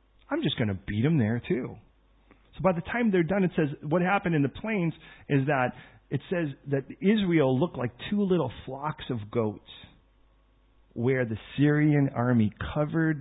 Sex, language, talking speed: male, English, 175 wpm